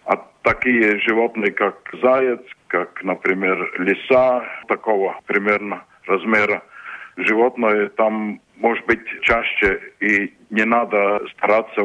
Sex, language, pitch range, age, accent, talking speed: male, Russian, 105-115 Hz, 50-69, native, 100 wpm